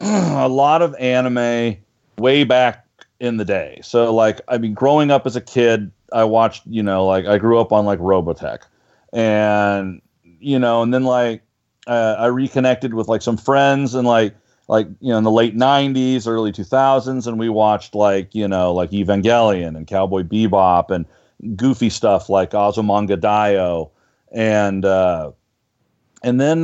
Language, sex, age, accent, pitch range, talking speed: English, male, 40-59, American, 105-130 Hz, 165 wpm